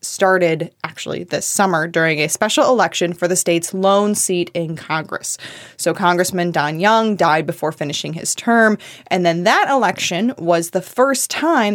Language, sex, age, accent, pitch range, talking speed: English, female, 20-39, American, 170-220 Hz, 165 wpm